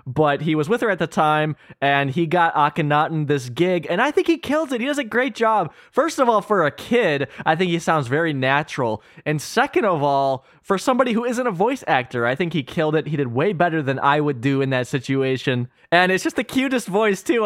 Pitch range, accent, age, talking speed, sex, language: 140-195 Hz, American, 20-39, 245 wpm, male, English